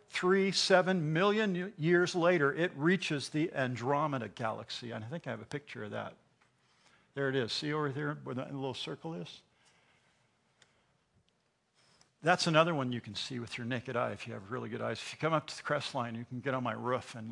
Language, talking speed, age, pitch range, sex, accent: English, 210 wpm, 50-69, 125-160 Hz, male, American